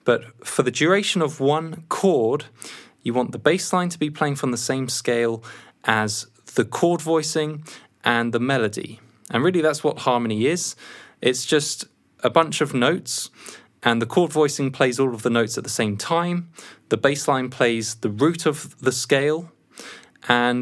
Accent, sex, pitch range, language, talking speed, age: British, male, 115-150 Hz, English, 180 wpm, 20-39